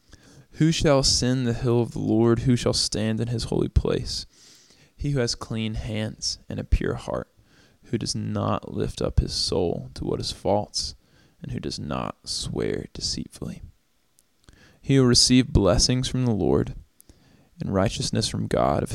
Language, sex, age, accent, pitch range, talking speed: English, male, 20-39, American, 110-125 Hz, 170 wpm